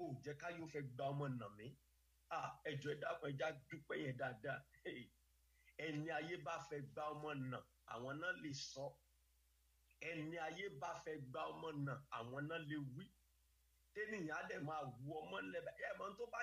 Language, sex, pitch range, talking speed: English, male, 145-240 Hz, 75 wpm